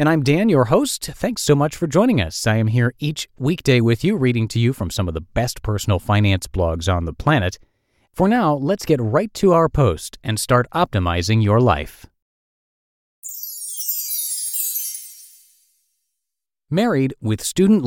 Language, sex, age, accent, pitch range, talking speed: English, male, 40-59, American, 100-155 Hz, 160 wpm